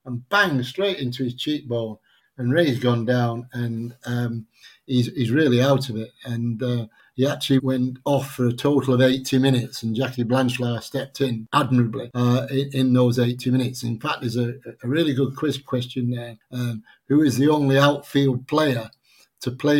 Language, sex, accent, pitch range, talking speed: English, male, British, 125-140 Hz, 185 wpm